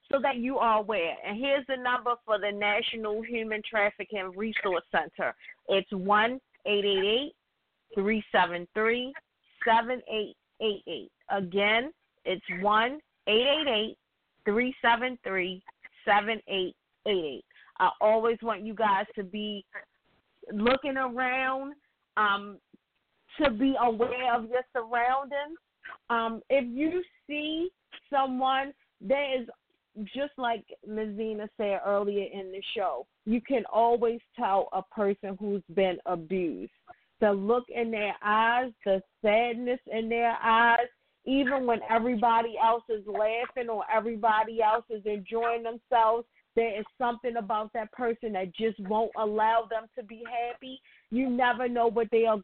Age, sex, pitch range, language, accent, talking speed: 40-59, female, 210-250 Hz, English, American, 120 wpm